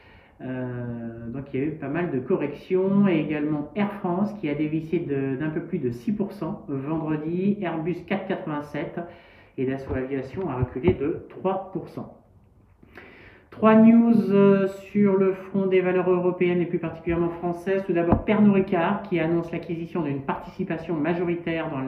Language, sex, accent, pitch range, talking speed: French, male, French, 140-190 Hz, 150 wpm